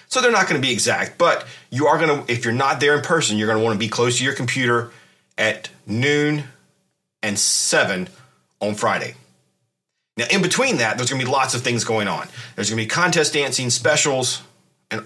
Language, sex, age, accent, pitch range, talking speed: English, male, 30-49, American, 110-145 Hz, 205 wpm